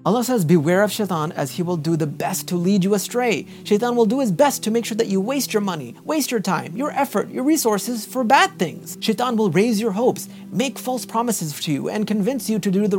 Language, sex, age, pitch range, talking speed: English, male, 30-49, 175-235 Hz, 250 wpm